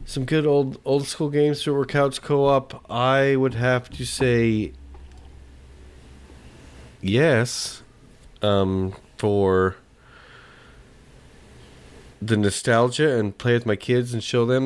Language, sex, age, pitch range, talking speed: English, male, 40-59, 100-130 Hz, 110 wpm